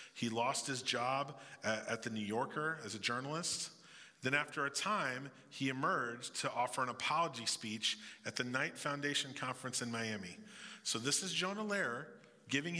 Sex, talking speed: male, 165 wpm